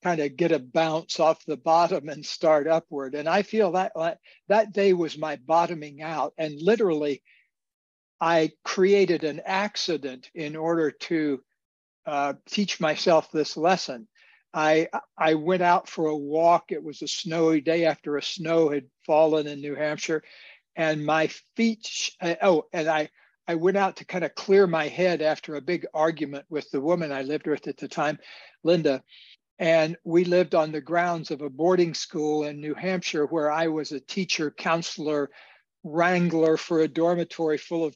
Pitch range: 150-175 Hz